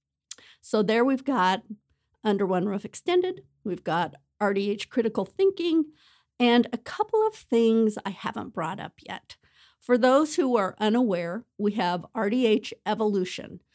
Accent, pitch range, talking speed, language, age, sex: American, 195-230 Hz, 140 wpm, English, 50-69, female